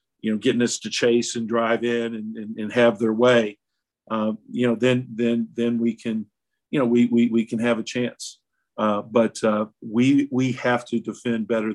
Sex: male